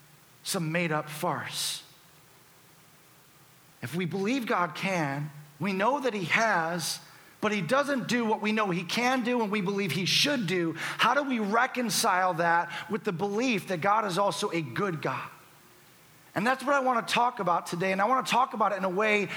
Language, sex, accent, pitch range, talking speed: English, male, American, 175-230 Hz, 200 wpm